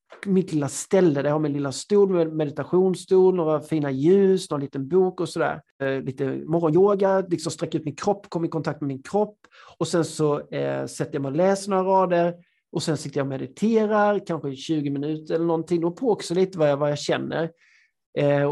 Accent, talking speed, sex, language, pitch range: native, 205 wpm, male, Swedish, 145-185 Hz